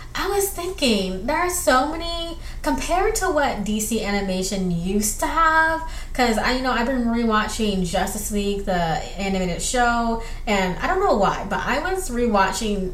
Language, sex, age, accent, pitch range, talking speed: English, female, 20-39, American, 190-260 Hz, 165 wpm